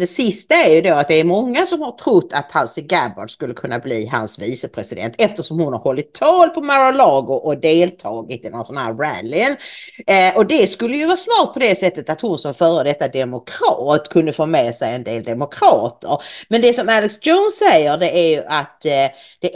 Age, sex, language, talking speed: 40-59, female, English, 210 wpm